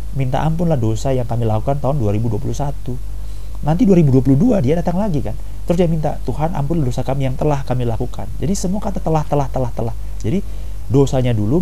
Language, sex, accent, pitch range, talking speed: Indonesian, male, native, 100-135 Hz, 180 wpm